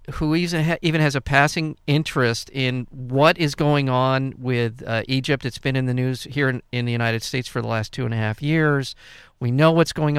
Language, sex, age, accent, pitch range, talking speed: English, male, 50-69, American, 125-155 Hz, 220 wpm